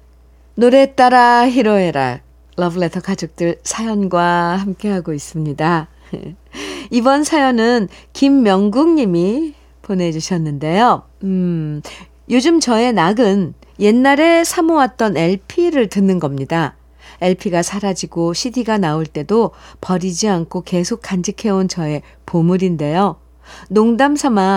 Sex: female